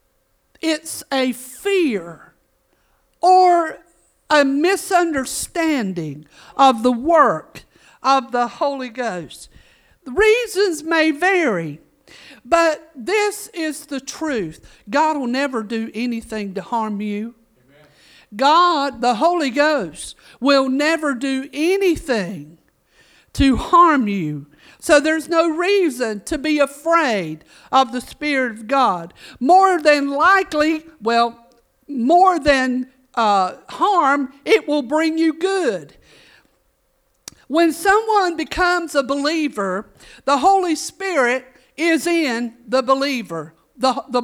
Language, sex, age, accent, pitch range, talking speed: English, male, 50-69, American, 235-330 Hz, 110 wpm